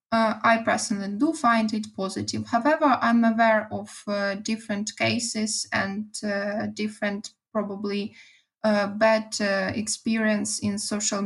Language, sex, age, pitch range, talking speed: English, female, 10-29, 215-240 Hz, 130 wpm